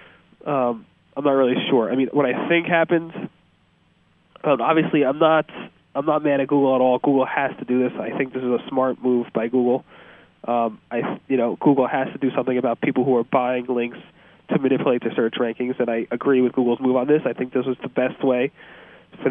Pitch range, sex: 120-135 Hz, male